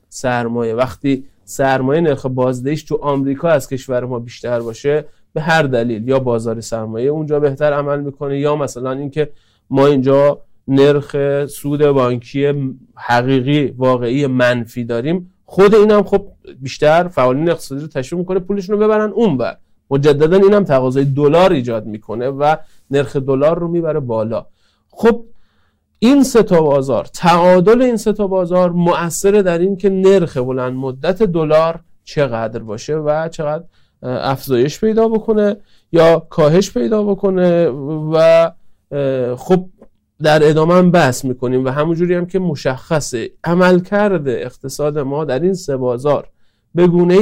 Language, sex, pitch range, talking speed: Persian, male, 135-180 Hz, 140 wpm